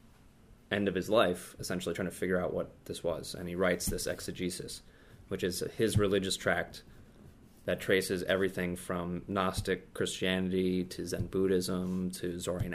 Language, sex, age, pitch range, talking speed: English, male, 20-39, 90-95 Hz, 155 wpm